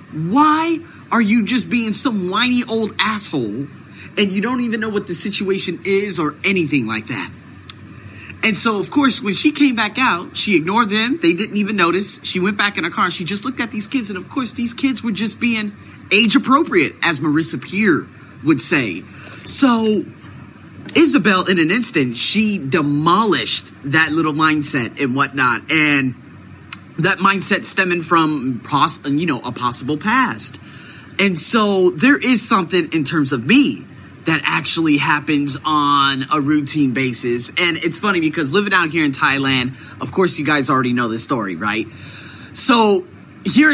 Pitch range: 145-210 Hz